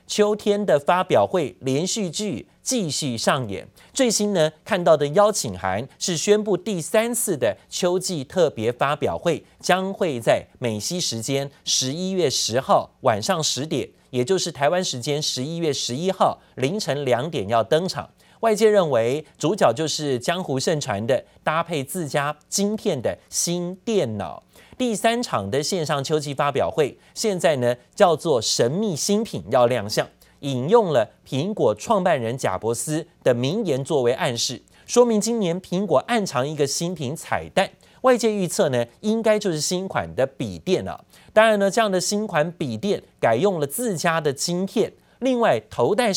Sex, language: male, Chinese